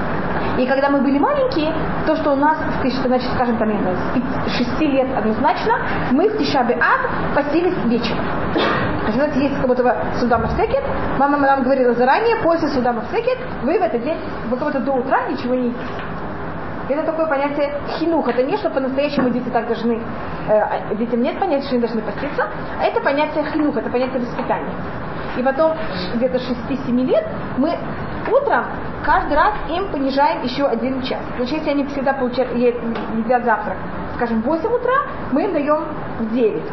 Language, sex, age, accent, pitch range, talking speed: Russian, female, 20-39, native, 240-290 Hz, 160 wpm